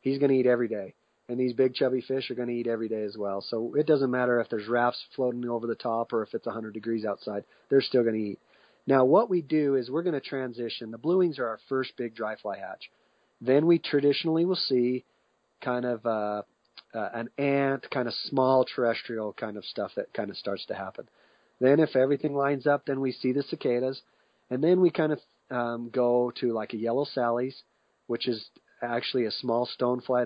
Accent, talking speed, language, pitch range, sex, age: American, 220 wpm, English, 115-135 Hz, male, 30-49